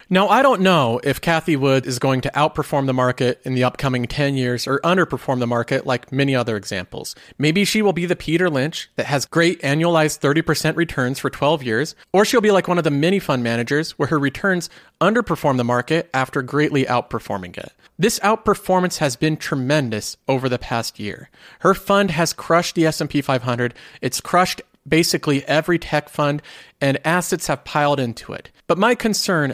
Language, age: English, 40-59